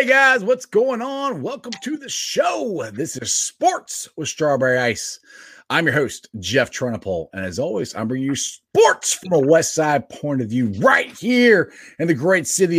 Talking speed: 190 wpm